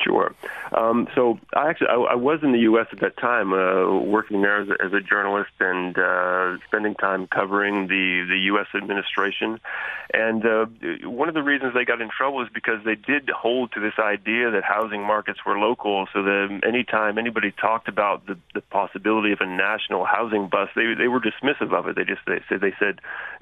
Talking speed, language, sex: 210 wpm, English, male